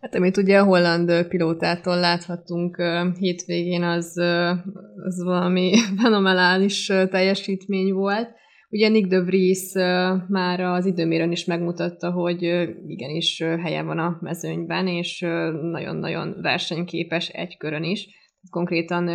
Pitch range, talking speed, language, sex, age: 170-195 Hz, 115 wpm, Hungarian, female, 20-39